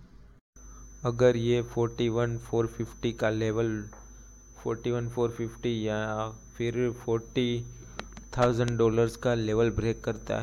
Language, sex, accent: Hindi, male, native